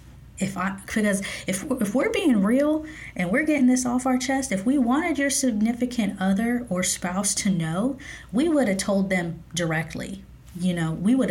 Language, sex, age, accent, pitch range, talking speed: English, female, 20-39, American, 185-225 Hz, 185 wpm